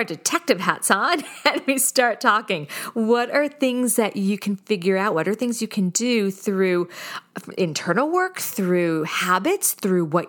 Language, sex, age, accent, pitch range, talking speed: English, female, 40-59, American, 175-235 Hz, 165 wpm